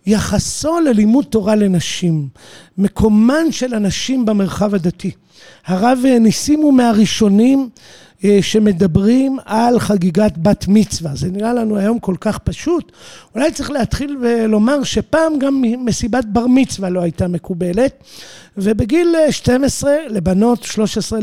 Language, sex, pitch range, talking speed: Hebrew, male, 195-255 Hz, 115 wpm